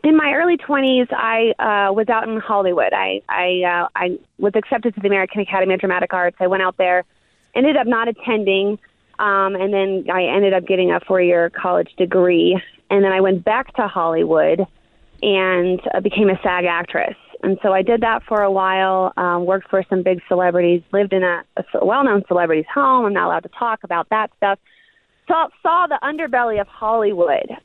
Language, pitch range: English, 185-225 Hz